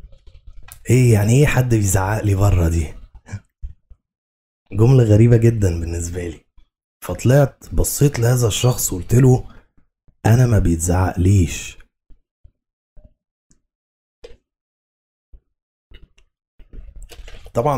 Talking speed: 80 wpm